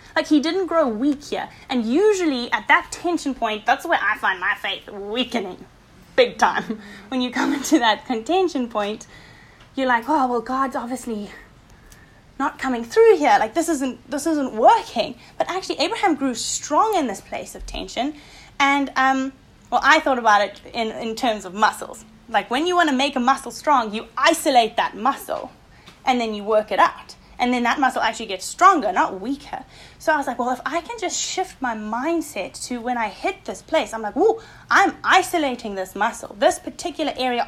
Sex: female